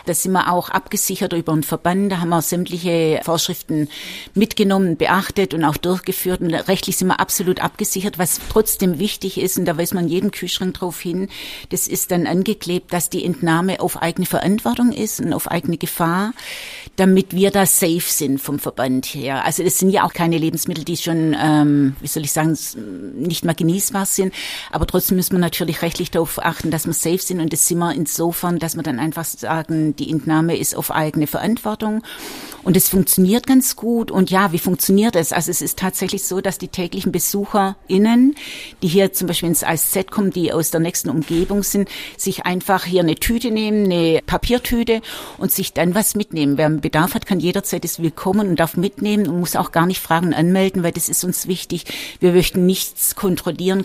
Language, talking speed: German, 200 wpm